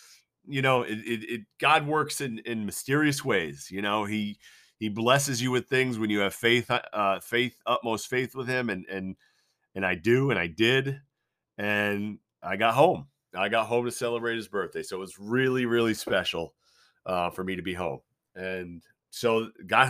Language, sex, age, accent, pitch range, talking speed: English, male, 40-59, American, 95-120 Hz, 190 wpm